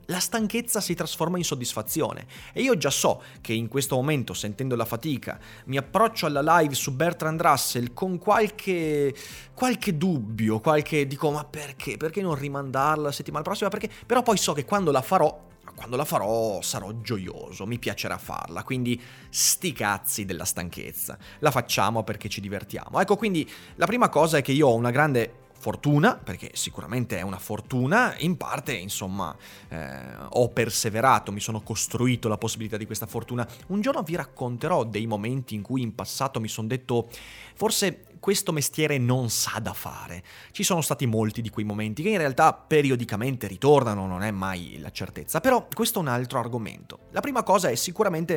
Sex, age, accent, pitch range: male, 30-49, native, 110-155 Hz